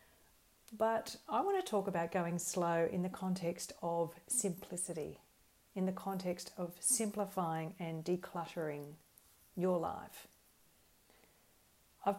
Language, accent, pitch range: English, Australian, 160-195 Hz